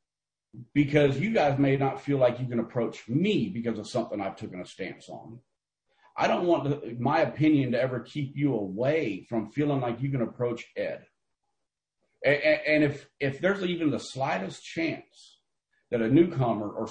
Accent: American